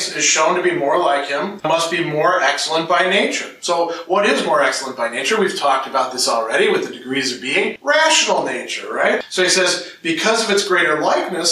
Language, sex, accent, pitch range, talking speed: English, male, American, 155-195 Hz, 215 wpm